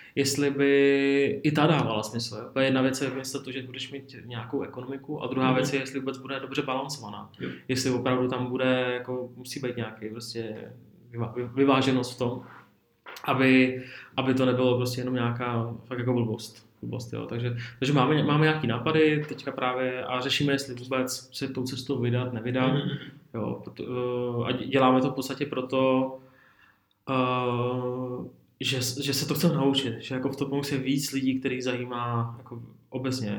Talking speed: 160 wpm